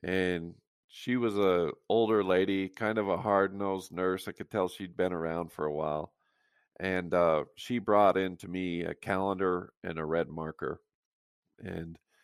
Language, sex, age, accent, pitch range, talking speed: English, male, 40-59, American, 90-110 Hz, 165 wpm